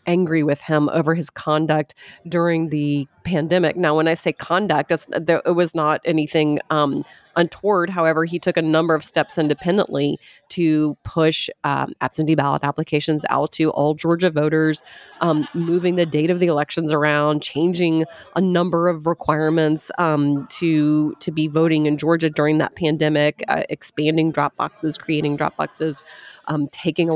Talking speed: 160 wpm